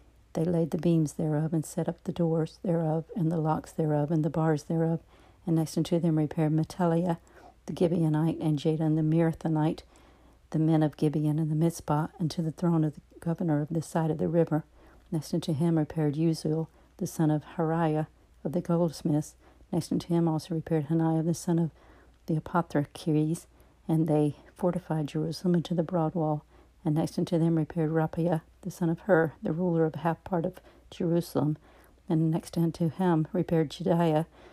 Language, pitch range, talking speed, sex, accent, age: English, 155-170 Hz, 180 wpm, female, American, 60-79